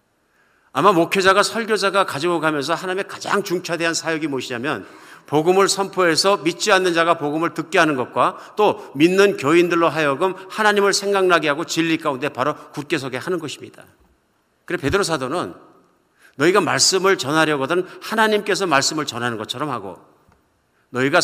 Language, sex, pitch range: Korean, male, 135-190 Hz